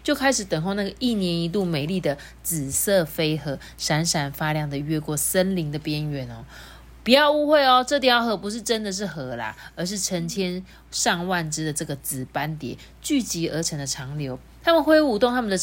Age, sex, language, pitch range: 30-49, female, Chinese, 150-215 Hz